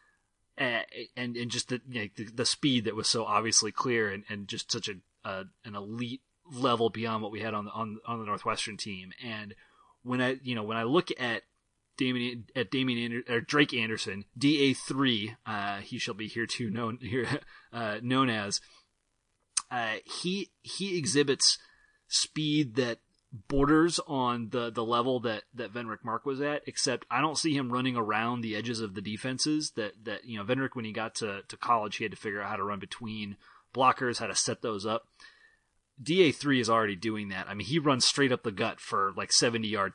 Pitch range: 105-130 Hz